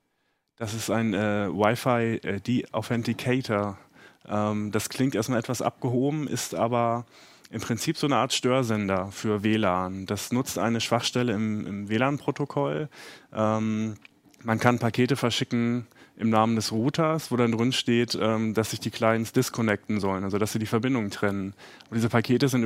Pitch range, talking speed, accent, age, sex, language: 110-125 Hz, 150 wpm, German, 30-49, male, German